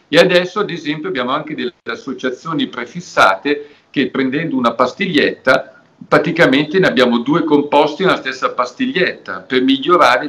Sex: male